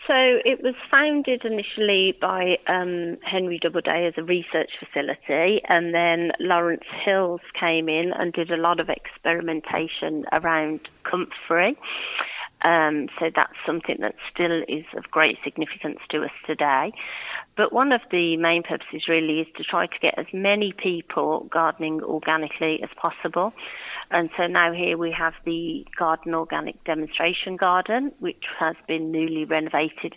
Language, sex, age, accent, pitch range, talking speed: English, female, 30-49, British, 160-185 Hz, 150 wpm